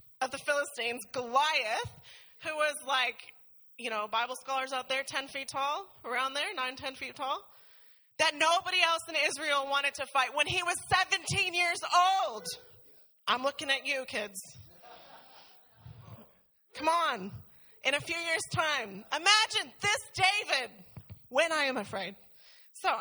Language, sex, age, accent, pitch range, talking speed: English, female, 30-49, American, 210-300 Hz, 145 wpm